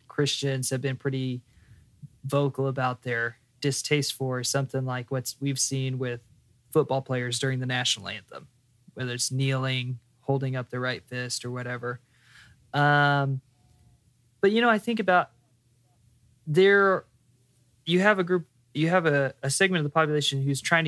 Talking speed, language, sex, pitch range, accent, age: 150 wpm, English, male, 125-150 Hz, American, 20-39